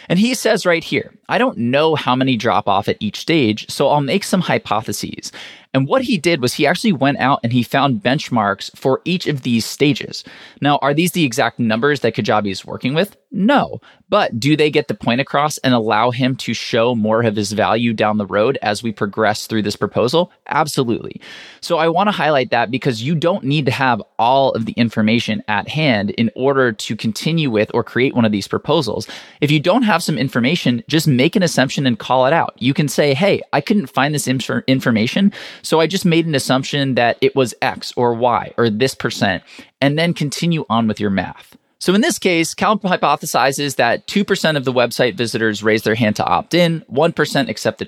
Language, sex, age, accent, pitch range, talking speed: English, male, 20-39, American, 115-155 Hz, 215 wpm